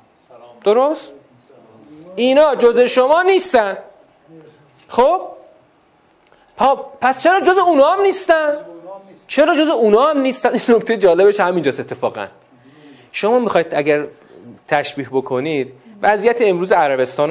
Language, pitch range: Persian, 135-225 Hz